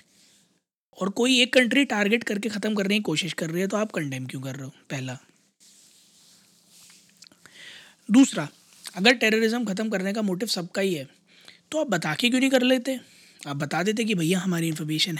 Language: Hindi